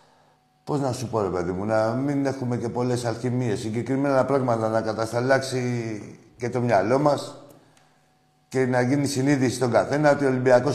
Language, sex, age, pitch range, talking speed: Greek, male, 50-69, 115-140 Hz, 165 wpm